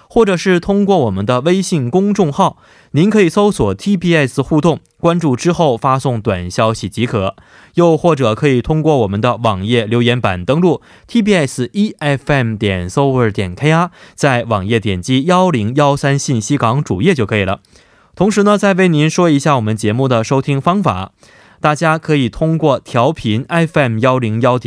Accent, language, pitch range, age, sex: Chinese, Korean, 115-165 Hz, 20-39, male